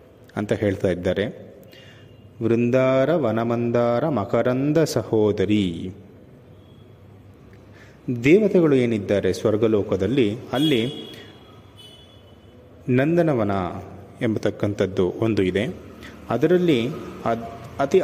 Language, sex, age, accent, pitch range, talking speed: Kannada, male, 30-49, native, 105-130 Hz, 60 wpm